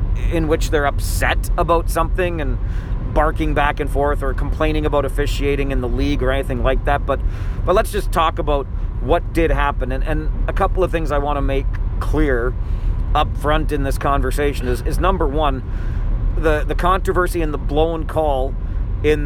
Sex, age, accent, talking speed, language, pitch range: male, 40-59, American, 185 wpm, English, 100-155 Hz